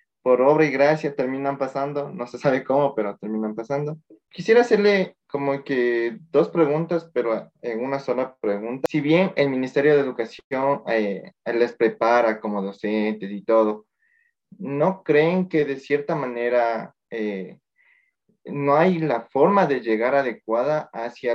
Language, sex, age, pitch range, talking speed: Spanish, male, 20-39, 115-155 Hz, 145 wpm